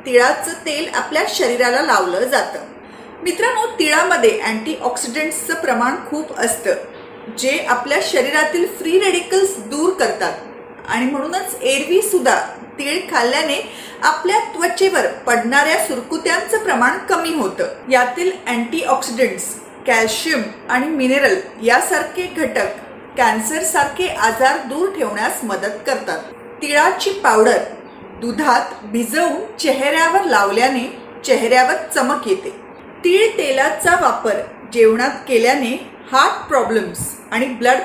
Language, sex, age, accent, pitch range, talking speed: Marathi, female, 30-49, native, 250-360 Hz, 80 wpm